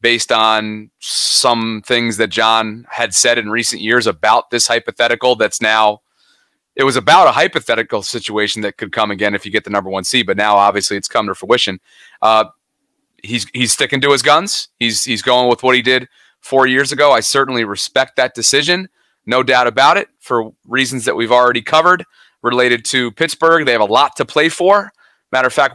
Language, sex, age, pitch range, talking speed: English, male, 30-49, 115-135 Hz, 200 wpm